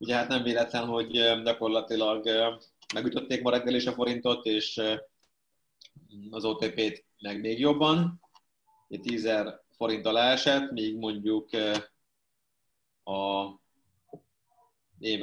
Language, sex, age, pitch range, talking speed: Hungarian, male, 30-49, 105-125 Hz, 100 wpm